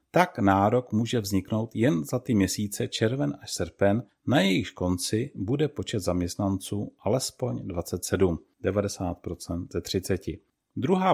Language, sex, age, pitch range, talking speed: Czech, male, 40-59, 95-130 Hz, 125 wpm